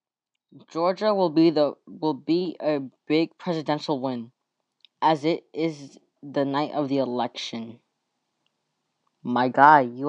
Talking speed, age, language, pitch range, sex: 125 wpm, 20-39, English, 140-180 Hz, female